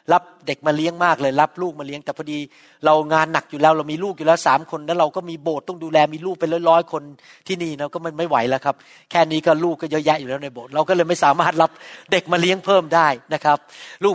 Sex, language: male, Thai